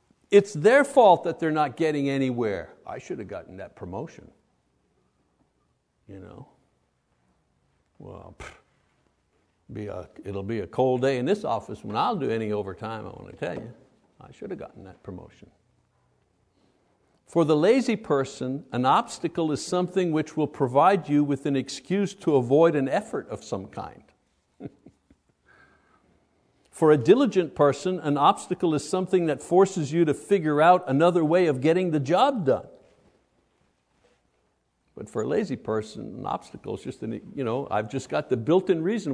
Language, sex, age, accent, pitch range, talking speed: English, male, 60-79, American, 125-180 Hz, 160 wpm